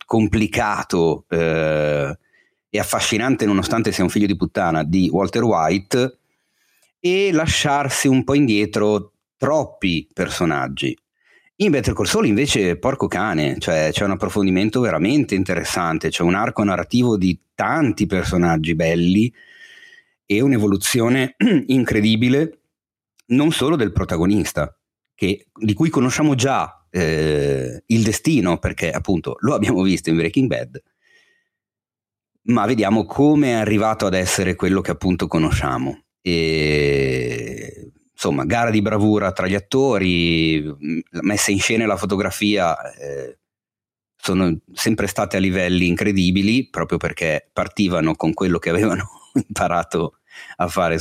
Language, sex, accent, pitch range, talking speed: Italian, male, native, 85-115 Hz, 125 wpm